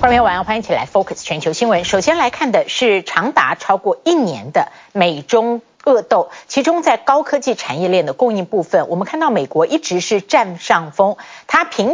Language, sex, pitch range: Chinese, female, 190-305 Hz